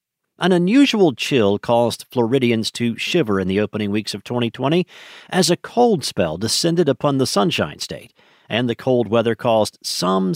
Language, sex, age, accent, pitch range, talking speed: English, male, 50-69, American, 115-160 Hz, 160 wpm